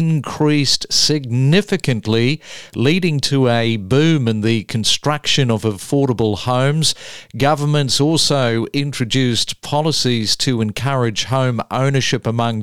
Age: 50-69